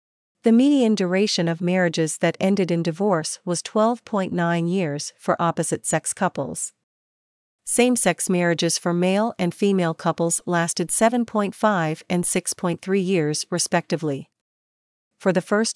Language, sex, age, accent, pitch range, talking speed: English, female, 40-59, American, 170-200 Hz, 120 wpm